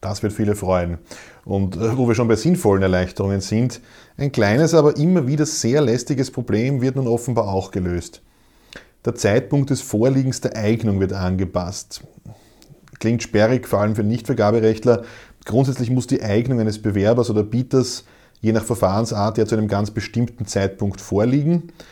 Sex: male